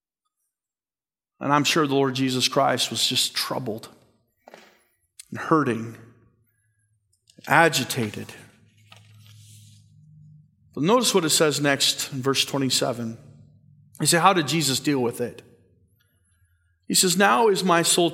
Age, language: 40-59, English